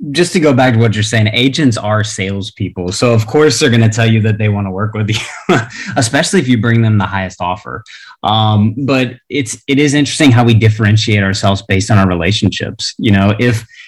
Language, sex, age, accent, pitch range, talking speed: English, male, 20-39, American, 100-115 Hz, 220 wpm